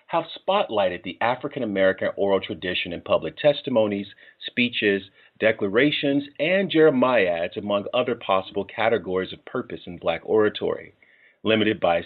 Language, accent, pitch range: English, American, 100-135 Hz